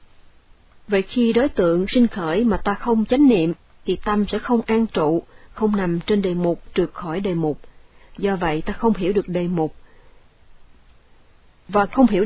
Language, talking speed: Vietnamese, 180 wpm